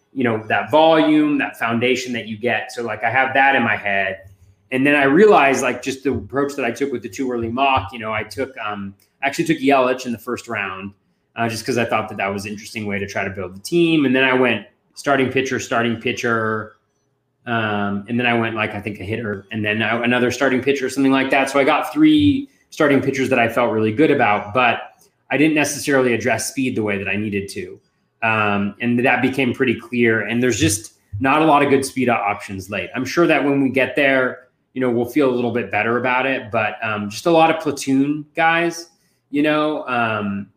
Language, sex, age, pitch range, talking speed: English, male, 30-49, 110-135 Hz, 230 wpm